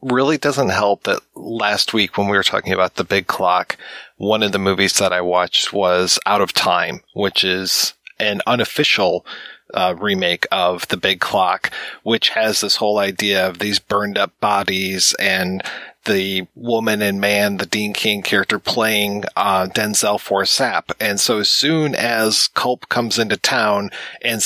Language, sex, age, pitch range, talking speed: English, male, 30-49, 100-145 Hz, 170 wpm